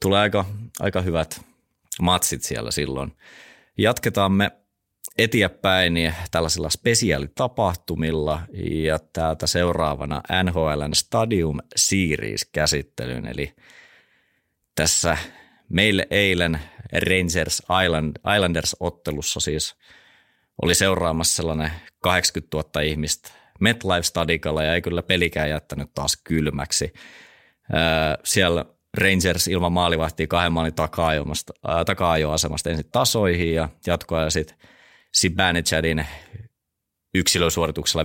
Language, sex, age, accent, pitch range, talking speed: Finnish, male, 30-49, native, 75-90 Hz, 85 wpm